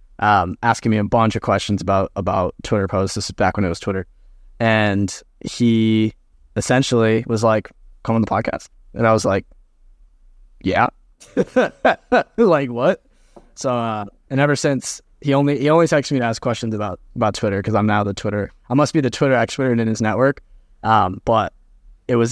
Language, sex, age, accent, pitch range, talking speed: English, male, 20-39, American, 105-125 Hz, 185 wpm